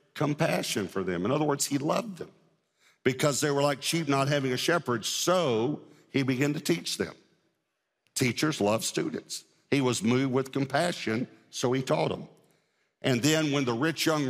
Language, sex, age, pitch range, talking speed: English, male, 60-79, 125-150 Hz, 175 wpm